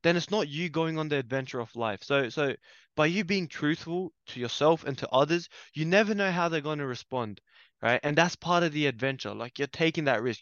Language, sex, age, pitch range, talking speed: English, male, 20-39, 130-160 Hz, 235 wpm